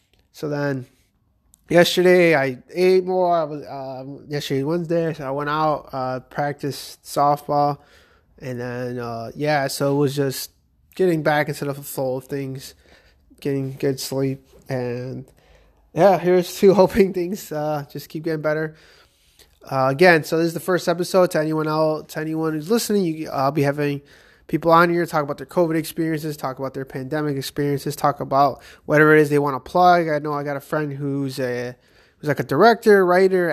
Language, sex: English, male